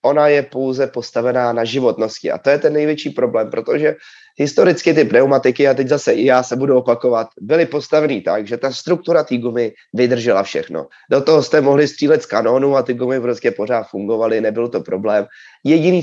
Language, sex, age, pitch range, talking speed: Czech, male, 30-49, 120-150 Hz, 190 wpm